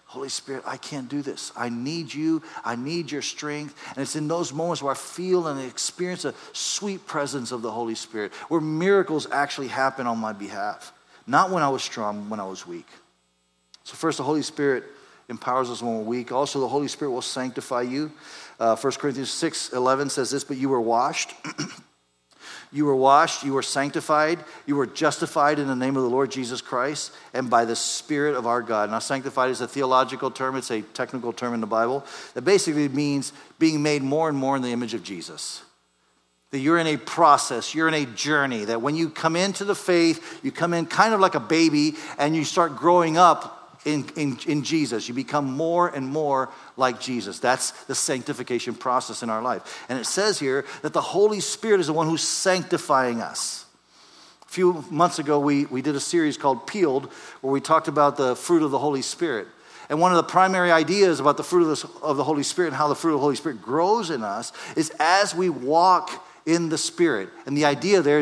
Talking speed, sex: 215 wpm, male